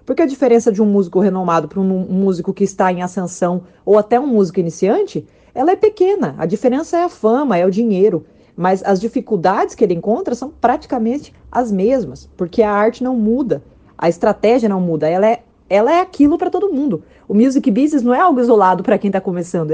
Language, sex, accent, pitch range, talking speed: Portuguese, female, Brazilian, 190-235 Hz, 205 wpm